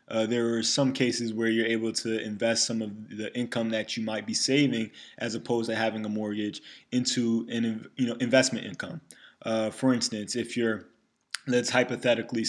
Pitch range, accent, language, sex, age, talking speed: 105-115 Hz, American, English, male, 20-39, 175 wpm